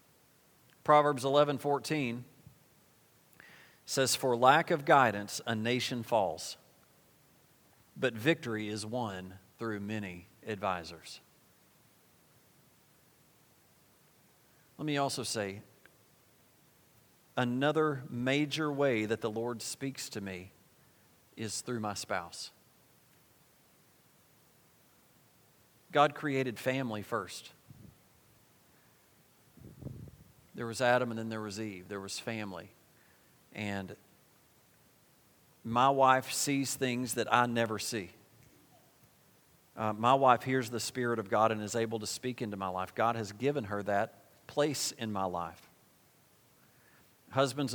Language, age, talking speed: English, 40-59, 105 wpm